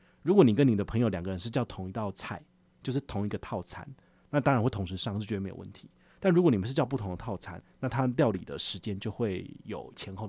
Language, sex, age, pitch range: Chinese, male, 30-49, 100-135 Hz